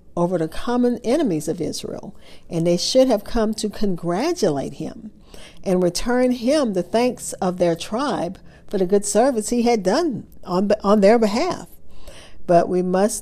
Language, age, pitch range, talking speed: English, 50-69, 170-210 Hz, 165 wpm